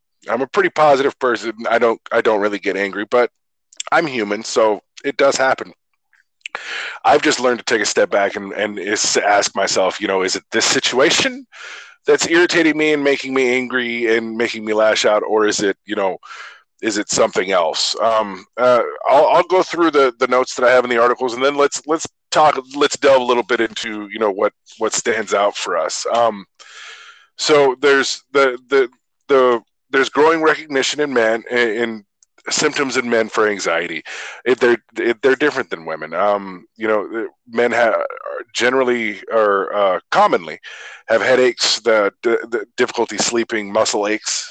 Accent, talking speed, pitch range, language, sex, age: American, 180 wpm, 110-135 Hz, English, male, 20-39